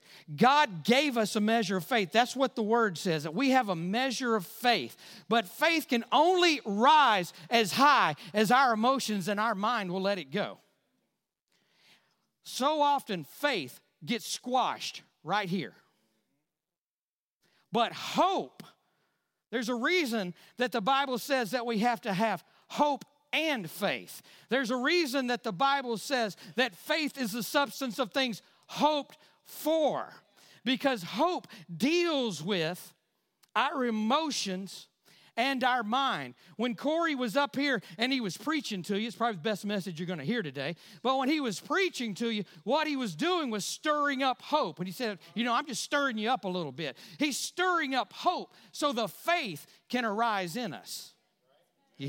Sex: male